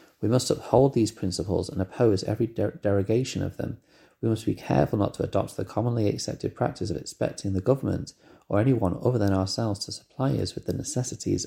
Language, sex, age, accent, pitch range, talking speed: English, male, 30-49, British, 90-105 Hz, 200 wpm